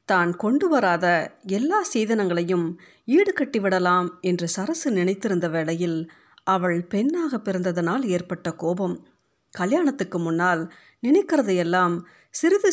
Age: 50-69